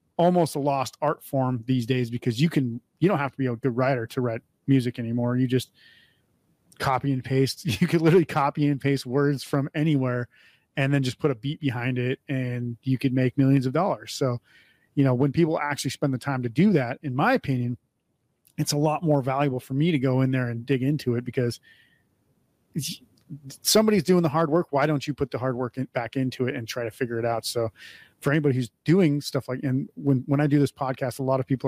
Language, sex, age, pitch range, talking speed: English, male, 30-49, 125-145 Hz, 230 wpm